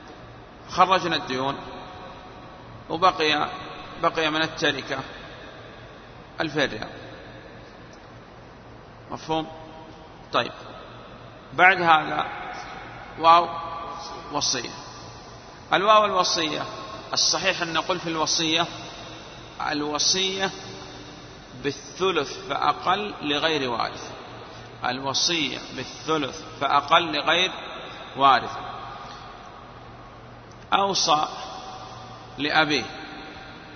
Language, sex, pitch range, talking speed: Arabic, male, 150-185 Hz, 55 wpm